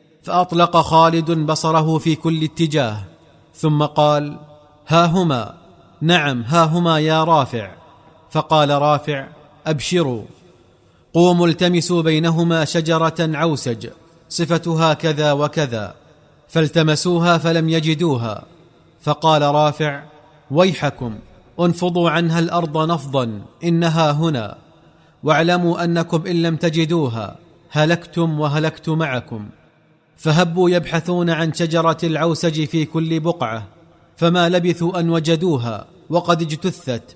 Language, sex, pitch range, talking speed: Arabic, male, 150-170 Hz, 95 wpm